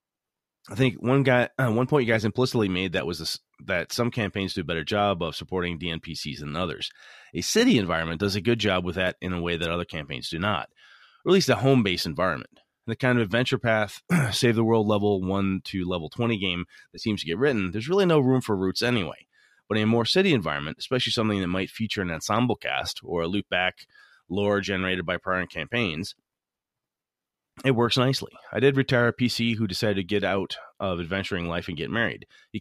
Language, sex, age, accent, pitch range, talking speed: English, male, 30-49, American, 90-120 Hz, 215 wpm